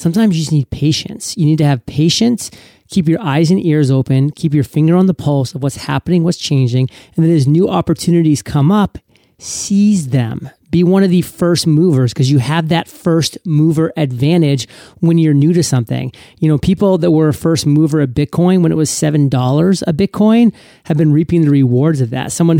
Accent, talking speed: American, 205 wpm